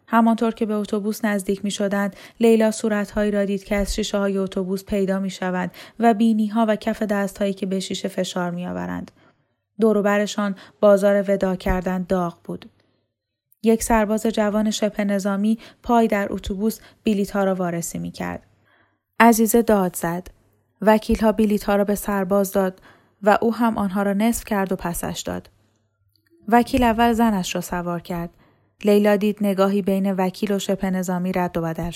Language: Persian